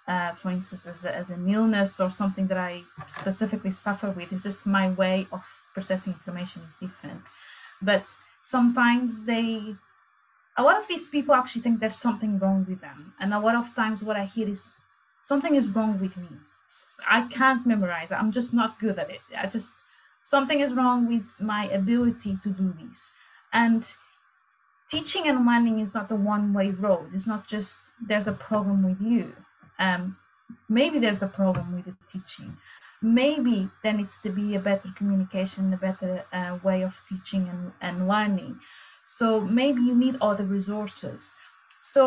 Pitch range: 190-230 Hz